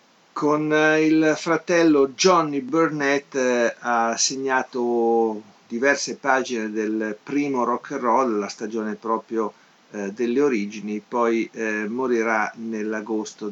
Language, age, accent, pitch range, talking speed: Italian, 50-69, native, 110-135 Hz, 110 wpm